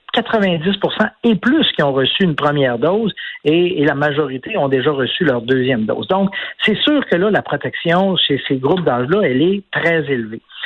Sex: male